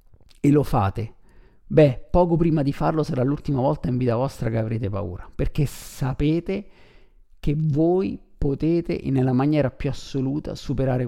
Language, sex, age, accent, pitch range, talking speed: Italian, male, 50-69, native, 120-150 Hz, 145 wpm